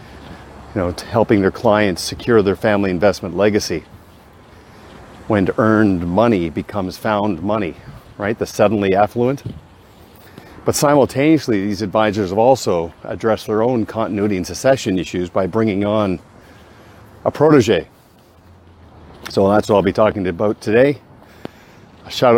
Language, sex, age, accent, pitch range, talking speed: English, male, 50-69, American, 95-110 Hz, 125 wpm